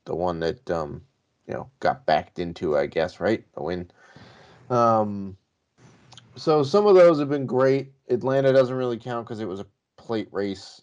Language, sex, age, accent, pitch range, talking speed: English, male, 30-49, American, 100-130 Hz, 175 wpm